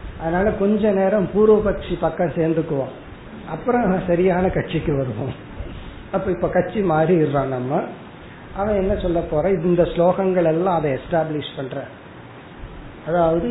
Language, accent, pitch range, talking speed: Tamil, native, 145-195 Hz, 60 wpm